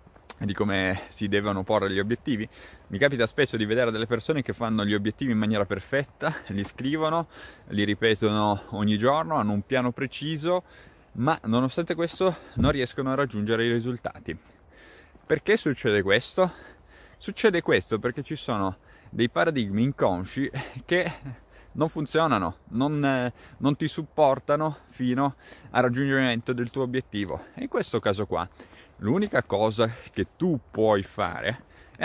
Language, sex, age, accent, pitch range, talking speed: Italian, male, 20-39, native, 100-140 Hz, 140 wpm